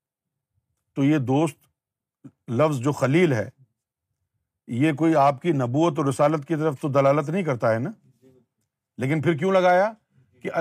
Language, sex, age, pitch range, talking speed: Urdu, male, 50-69, 130-185 Hz, 155 wpm